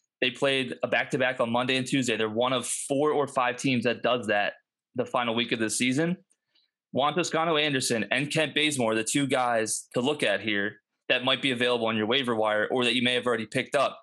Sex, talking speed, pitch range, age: male, 225 wpm, 120-150 Hz, 20-39